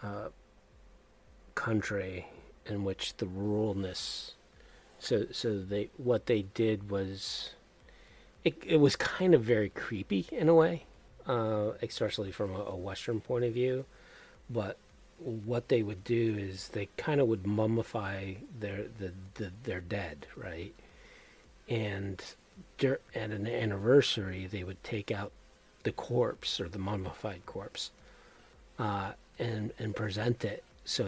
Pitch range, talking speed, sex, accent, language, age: 100-115 Hz, 135 wpm, male, American, English, 40-59